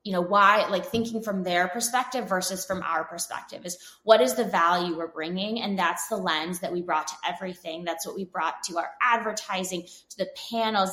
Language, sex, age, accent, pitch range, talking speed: English, female, 20-39, American, 185-245 Hz, 210 wpm